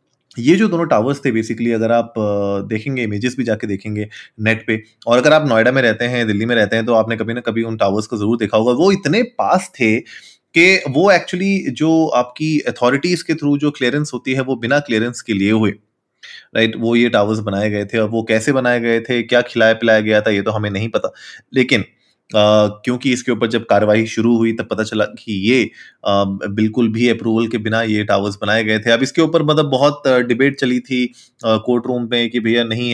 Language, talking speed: Hindi, 220 wpm